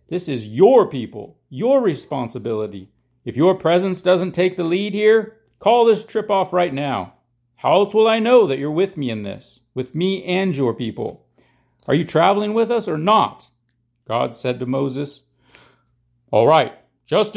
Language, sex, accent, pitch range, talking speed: English, male, American, 125-190 Hz, 175 wpm